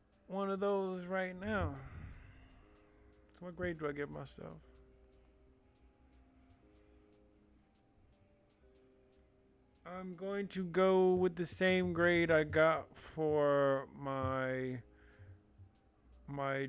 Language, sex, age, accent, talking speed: English, male, 30-49, American, 85 wpm